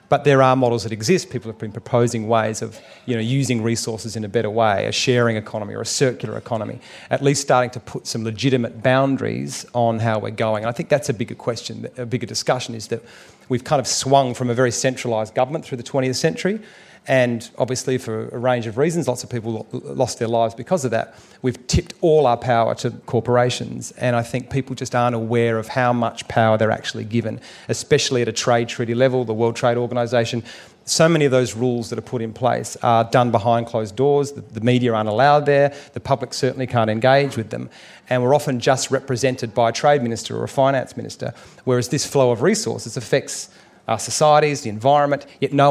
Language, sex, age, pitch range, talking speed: English, male, 40-59, 115-130 Hz, 215 wpm